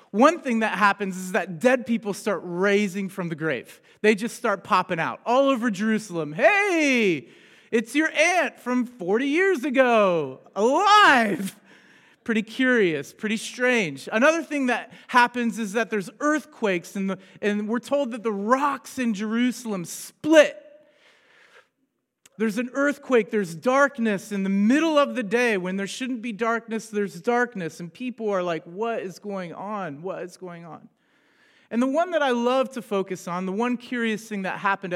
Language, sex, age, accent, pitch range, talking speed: English, male, 30-49, American, 190-255 Hz, 165 wpm